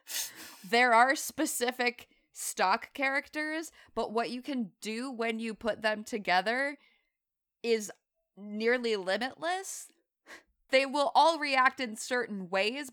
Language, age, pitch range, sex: English, 20-39, 175-230 Hz, female